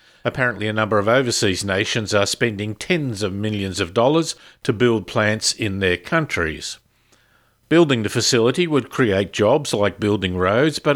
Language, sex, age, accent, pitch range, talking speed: English, male, 50-69, Australian, 110-155 Hz, 160 wpm